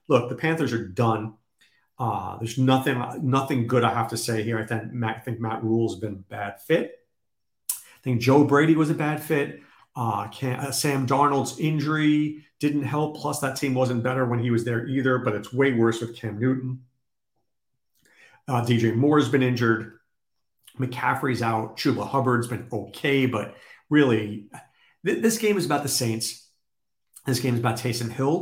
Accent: American